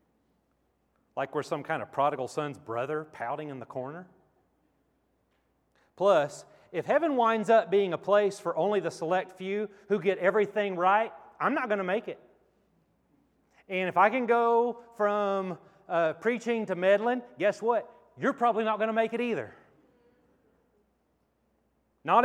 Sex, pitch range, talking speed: male, 150-215 Hz, 150 wpm